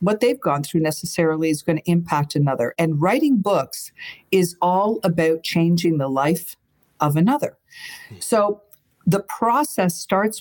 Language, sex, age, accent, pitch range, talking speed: English, female, 50-69, American, 170-245 Hz, 145 wpm